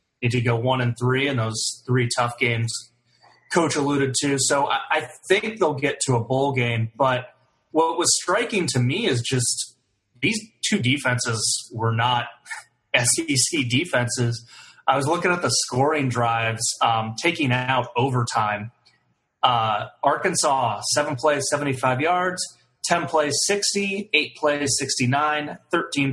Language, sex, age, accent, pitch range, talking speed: English, male, 30-49, American, 120-150 Hz, 140 wpm